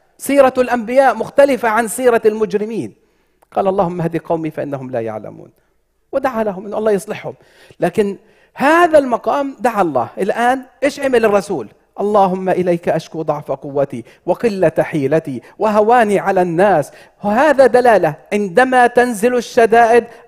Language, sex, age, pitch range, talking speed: English, male, 40-59, 195-260 Hz, 125 wpm